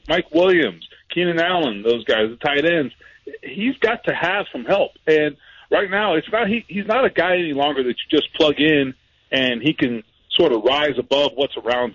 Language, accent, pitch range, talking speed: English, American, 125-175 Hz, 190 wpm